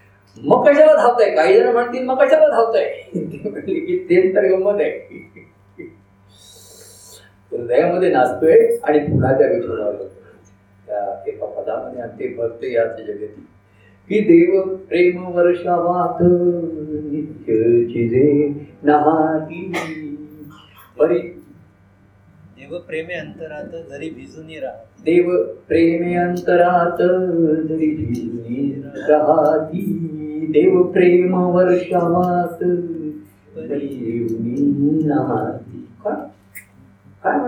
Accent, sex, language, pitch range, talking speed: native, male, Marathi, 115-185 Hz, 70 wpm